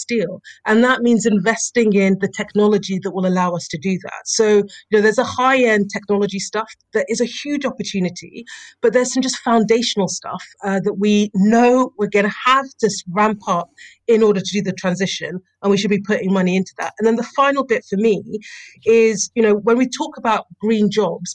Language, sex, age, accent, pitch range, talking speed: English, female, 40-59, British, 190-235 Hz, 210 wpm